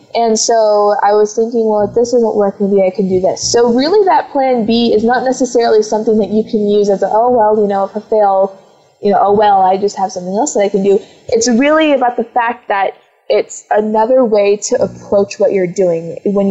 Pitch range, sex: 195-230 Hz, female